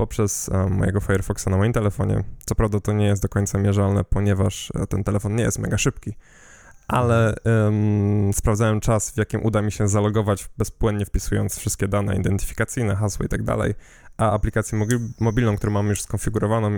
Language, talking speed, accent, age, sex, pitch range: Polish, 165 wpm, native, 10-29, male, 100-110 Hz